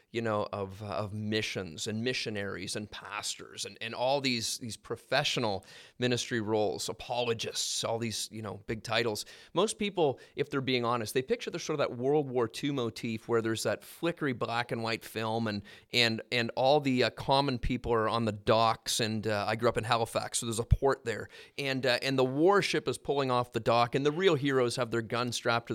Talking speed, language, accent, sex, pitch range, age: 215 wpm, English, American, male, 115-135 Hz, 30-49